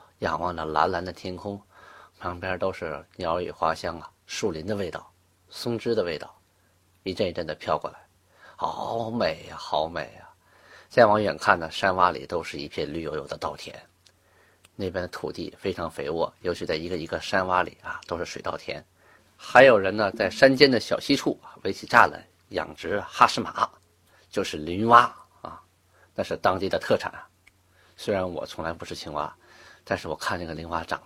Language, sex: Chinese, male